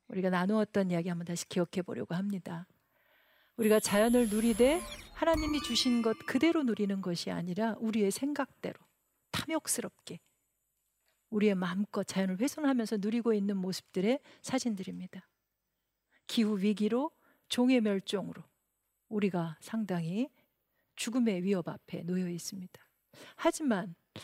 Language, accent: Korean, native